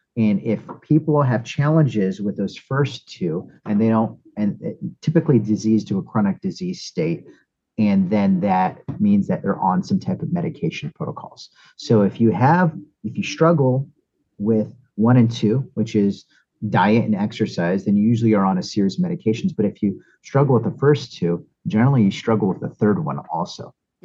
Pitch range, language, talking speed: 115-165 Hz, English, 185 wpm